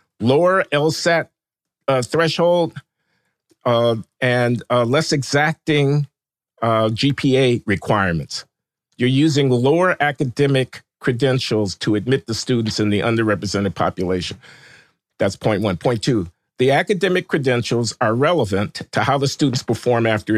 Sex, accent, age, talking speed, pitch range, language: male, American, 50-69, 120 wpm, 115-150 Hz, English